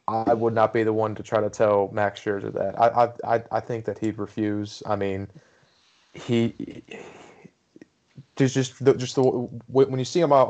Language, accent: English, American